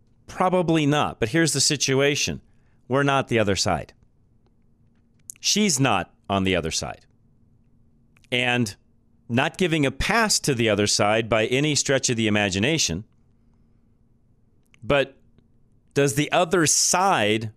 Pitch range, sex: 110-140 Hz, male